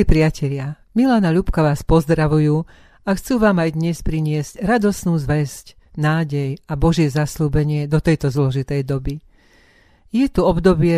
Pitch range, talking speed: 145-165 Hz, 130 wpm